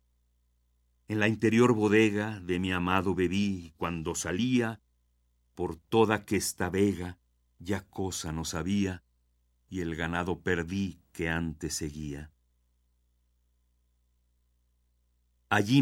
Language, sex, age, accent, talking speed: Spanish, male, 50-69, Mexican, 100 wpm